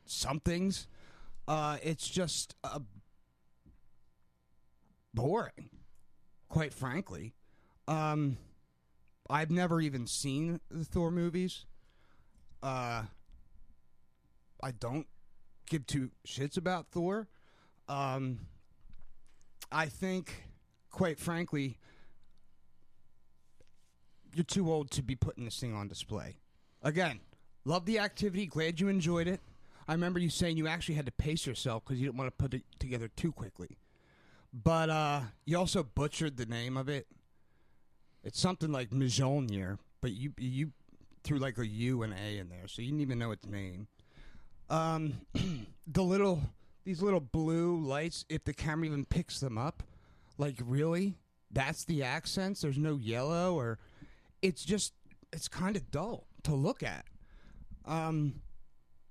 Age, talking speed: 30-49, 130 wpm